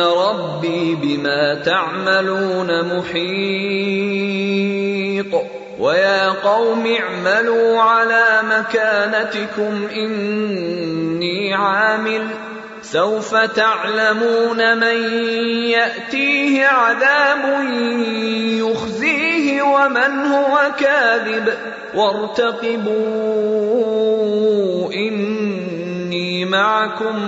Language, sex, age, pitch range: English, male, 30-49, 195-230 Hz